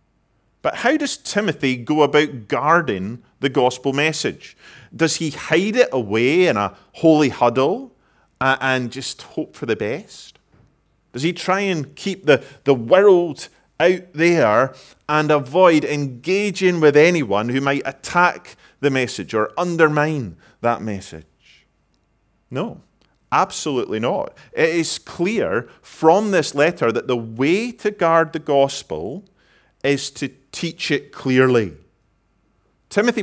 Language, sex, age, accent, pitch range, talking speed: English, male, 30-49, British, 125-170 Hz, 130 wpm